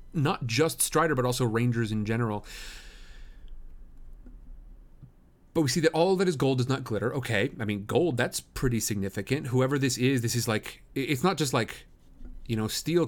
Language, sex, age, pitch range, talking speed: English, male, 40-59, 100-150 Hz, 180 wpm